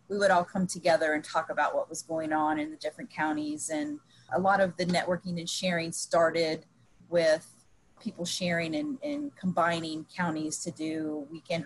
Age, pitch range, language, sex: 30-49, 160-210 Hz, English, female